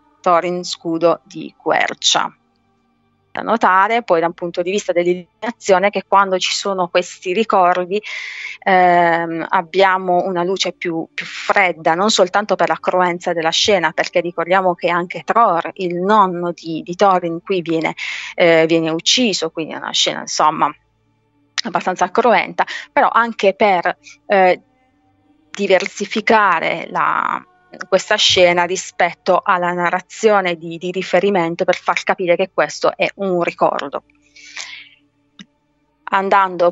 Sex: female